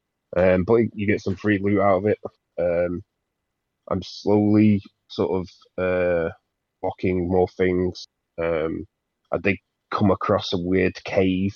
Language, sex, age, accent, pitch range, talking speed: English, male, 30-49, British, 85-100 Hz, 140 wpm